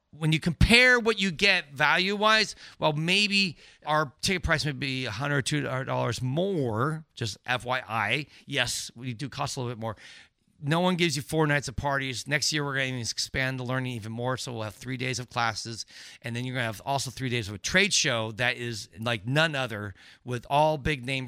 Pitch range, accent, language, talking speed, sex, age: 120-155 Hz, American, English, 210 wpm, male, 40-59